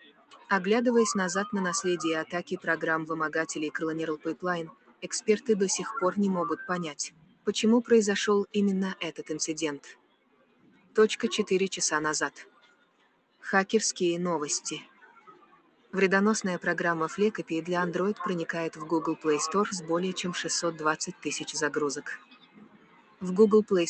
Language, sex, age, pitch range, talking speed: English, female, 20-39, 160-200 Hz, 115 wpm